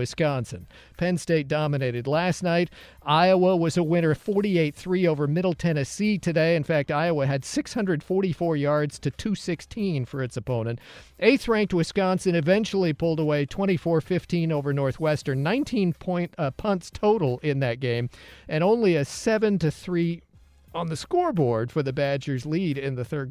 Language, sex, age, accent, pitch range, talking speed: English, male, 50-69, American, 145-185 Hz, 150 wpm